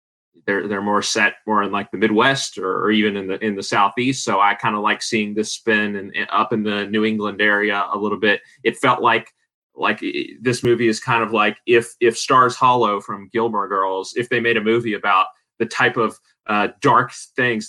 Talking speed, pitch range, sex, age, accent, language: 215 wpm, 100-120 Hz, male, 30-49, American, English